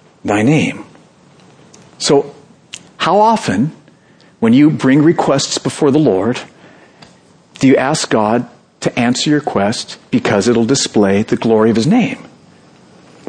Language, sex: English, male